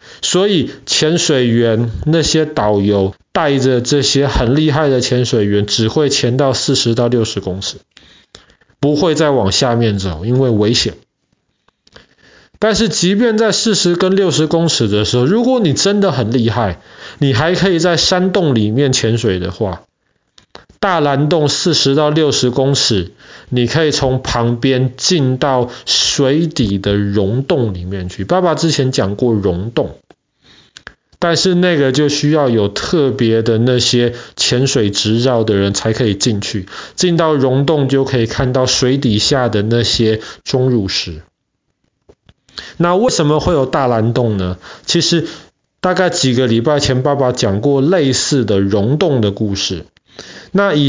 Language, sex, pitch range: Chinese, male, 115-155 Hz